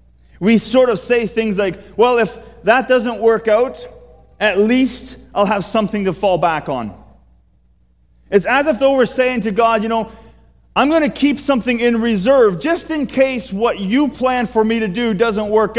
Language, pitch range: English, 165-245 Hz